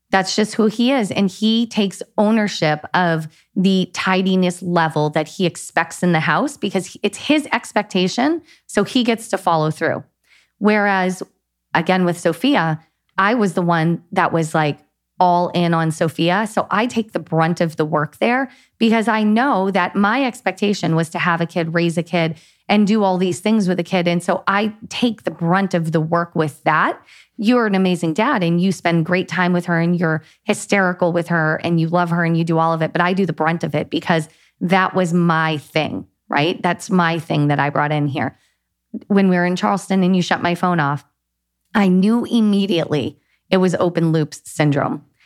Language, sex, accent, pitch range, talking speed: English, female, American, 165-210 Hz, 200 wpm